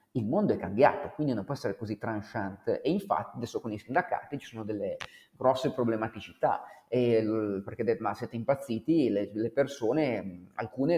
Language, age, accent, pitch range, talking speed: Italian, 30-49, native, 115-160 Hz, 155 wpm